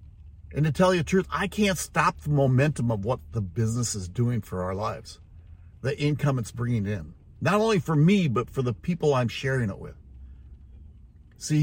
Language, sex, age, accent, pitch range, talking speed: English, male, 60-79, American, 95-155 Hz, 195 wpm